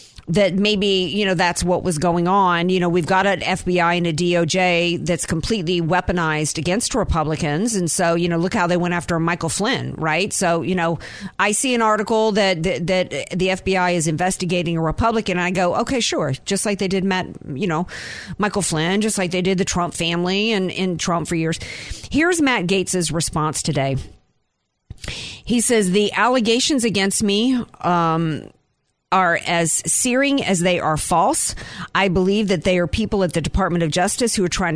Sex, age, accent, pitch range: female, 50-69, American, 165-205 Hz